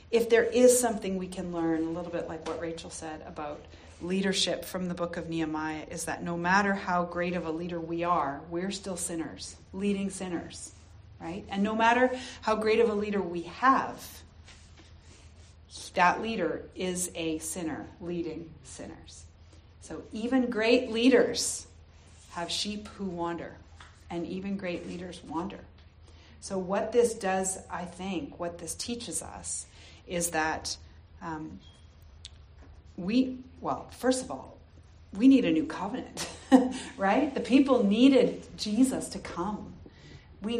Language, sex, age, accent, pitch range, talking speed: English, female, 40-59, American, 150-210 Hz, 145 wpm